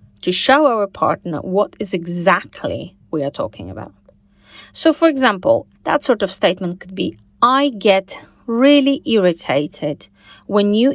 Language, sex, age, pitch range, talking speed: English, female, 30-49, 160-225 Hz, 140 wpm